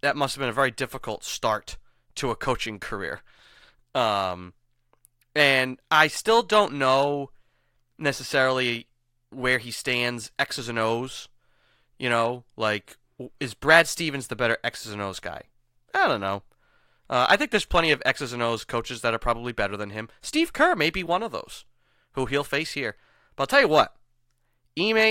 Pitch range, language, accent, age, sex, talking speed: 115-145 Hz, English, American, 30-49, male, 175 wpm